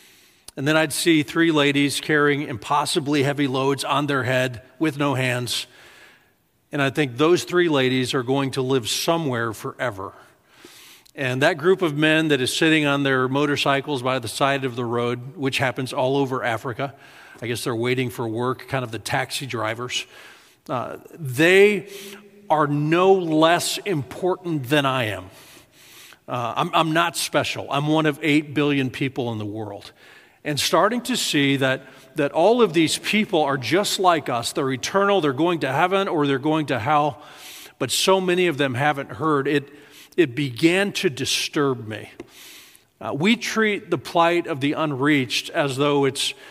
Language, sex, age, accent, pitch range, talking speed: English, male, 40-59, American, 130-165 Hz, 170 wpm